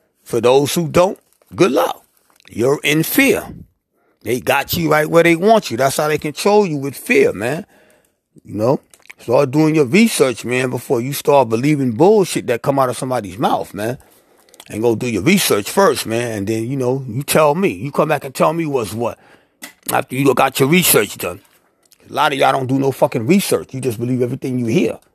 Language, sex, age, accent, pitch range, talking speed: English, male, 30-49, American, 135-175 Hz, 210 wpm